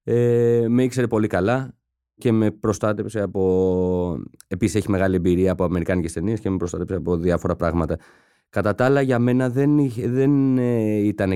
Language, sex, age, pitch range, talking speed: Greek, male, 30-49, 85-115 Hz, 165 wpm